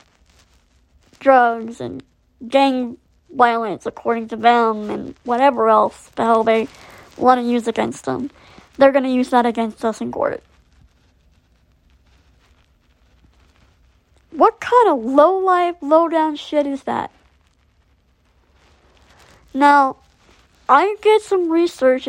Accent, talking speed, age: American, 110 wpm, 30-49